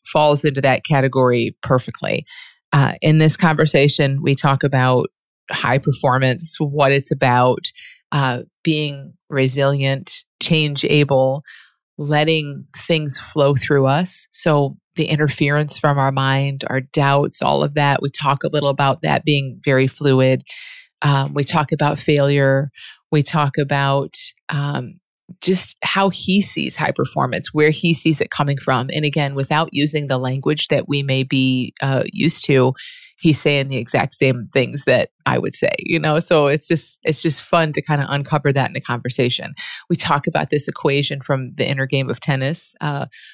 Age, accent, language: 30-49, American, English